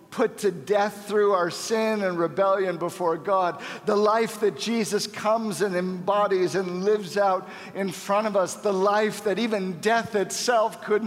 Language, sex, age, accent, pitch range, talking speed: English, male, 50-69, American, 135-205 Hz, 170 wpm